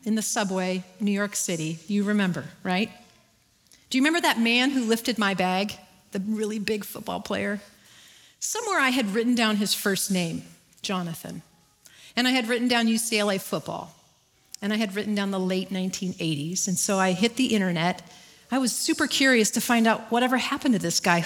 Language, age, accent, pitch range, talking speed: English, 40-59, American, 175-230 Hz, 185 wpm